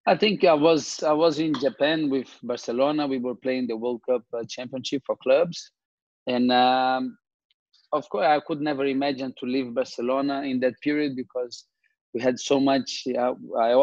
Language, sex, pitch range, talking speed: English, male, 125-150 Hz, 170 wpm